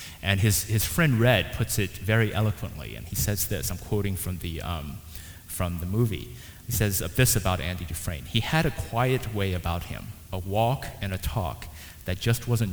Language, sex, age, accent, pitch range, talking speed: English, male, 30-49, American, 90-115 Hz, 190 wpm